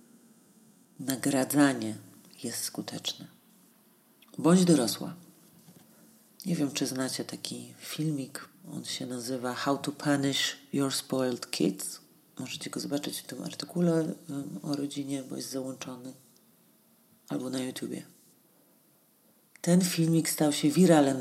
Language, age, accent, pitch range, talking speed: Polish, 40-59, native, 130-170 Hz, 110 wpm